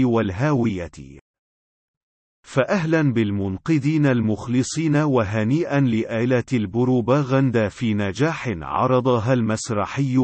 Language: Arabic